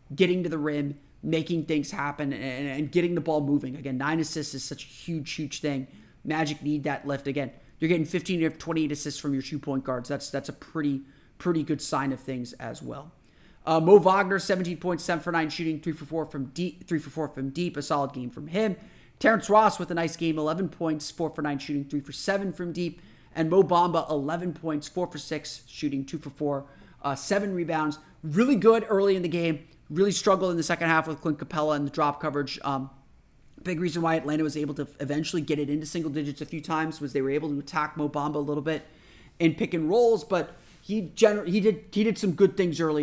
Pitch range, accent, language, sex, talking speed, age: 145-175 Hz, American, English, male, 235 wpm, 30-49